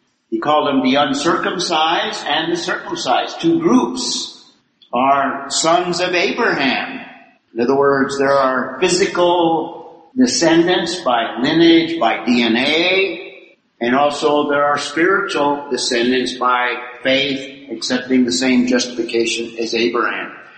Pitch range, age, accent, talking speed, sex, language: 120-150 Hz, 50-69, American, 115 wpm, male, English